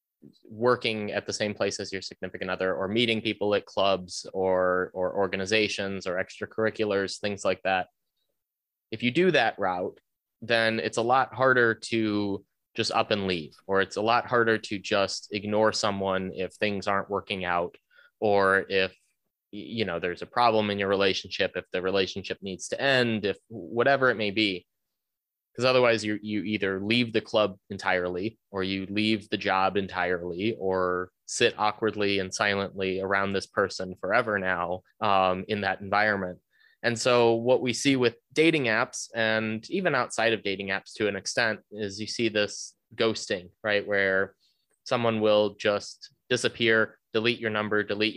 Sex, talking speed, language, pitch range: male, 165 wpm, English, 95-110 Hz